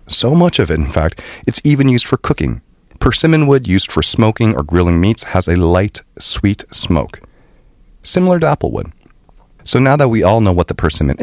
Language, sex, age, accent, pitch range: Korean, male, 30-49, American, 75-115 Hz